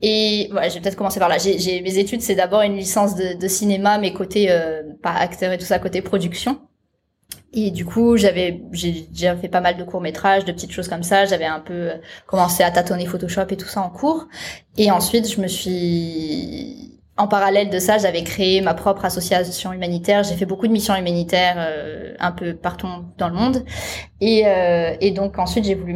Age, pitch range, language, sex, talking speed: 20-39, 175-205 Hz, French, female, 215 wpm